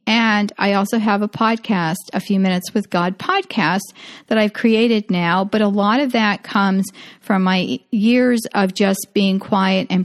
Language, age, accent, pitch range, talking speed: English, 40-59, American, 185-235 Hz, 180 wpm